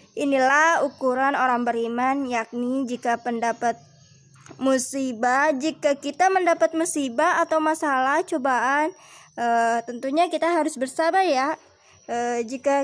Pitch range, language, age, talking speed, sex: 235-305 Hz, Indonesian, 20-39, 105 wpm, male